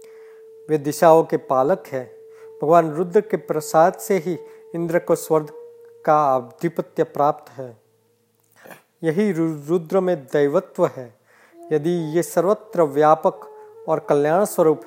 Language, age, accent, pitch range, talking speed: Hindi, 40-59, native, 145-210 Hz, 120 wpm